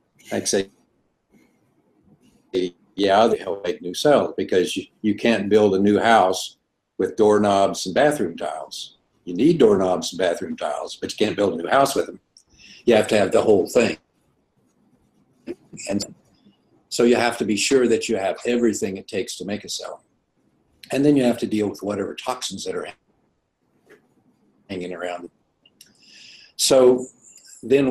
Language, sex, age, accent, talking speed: English, male, 60-79, American, 160 wpm